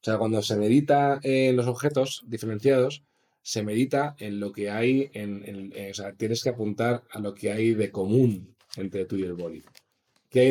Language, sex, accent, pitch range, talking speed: Spanish, male, Spanish, 105-135 Hz, 210 wpm